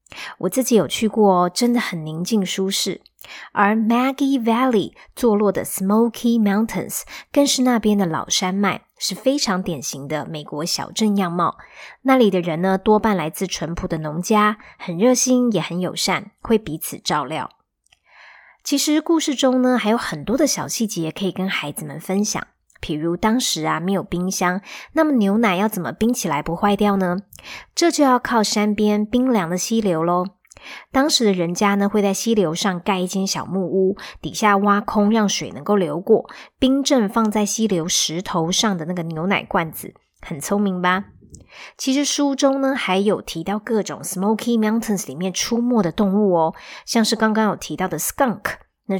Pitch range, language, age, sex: 180-230 Hz, Chinese, 20-39, male